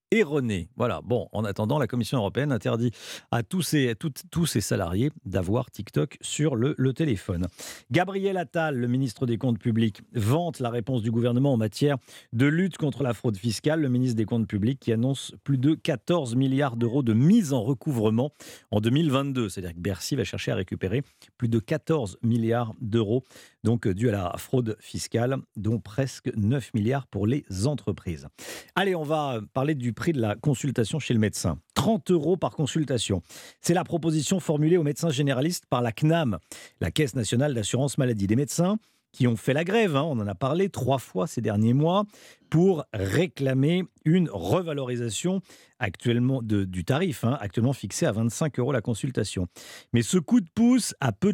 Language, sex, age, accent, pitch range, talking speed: French, male, 40-59, French, 115-155 Hz, 185 wpm